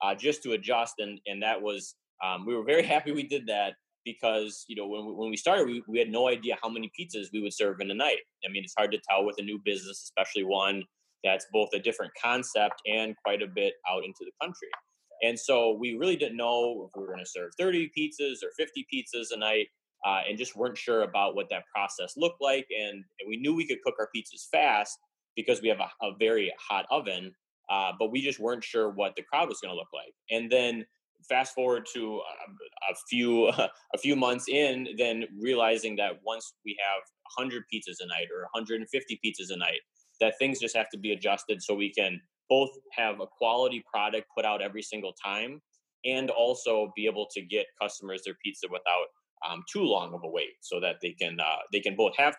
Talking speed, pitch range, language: 225 wpm, 105-170 Hz, English